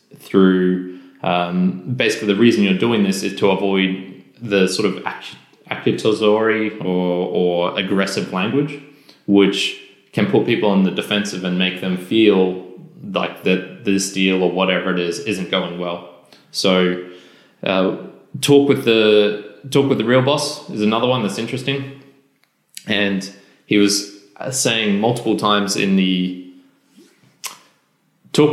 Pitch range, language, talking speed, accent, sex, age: 95-110 Hz, English, 135 wpm, Australian, male, 20-39